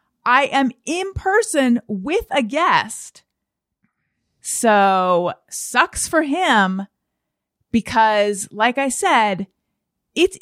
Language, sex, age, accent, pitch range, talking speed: English, female, 30-49, American, 190-265 Hz, 90 wpm